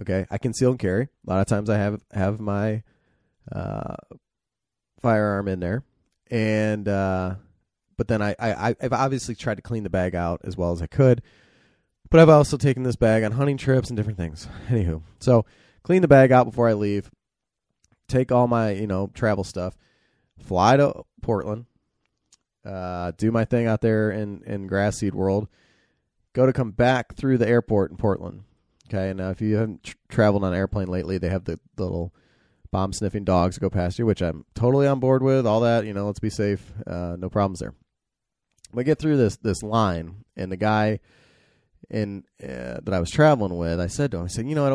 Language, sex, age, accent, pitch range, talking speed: English, male, 30-49, American, 95-115 Hz, 205 wpm